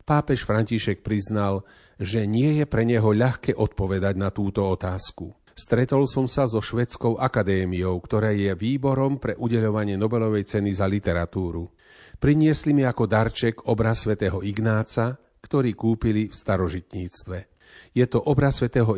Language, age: Slovak, 40-59